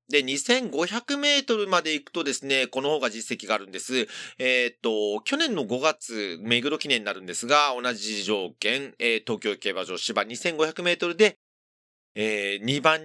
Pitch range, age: 120-200 Hz, 40-59